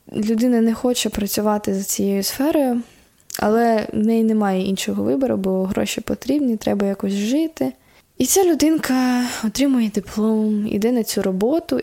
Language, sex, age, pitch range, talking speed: Ukrainian, female, 10-29, 200-245 Hz, 140 wpm